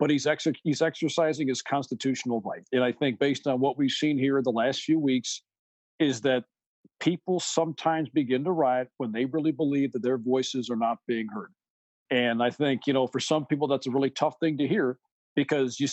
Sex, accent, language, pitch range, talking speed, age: male, American, English, 135-155 Hz, 210 wpm, 50-69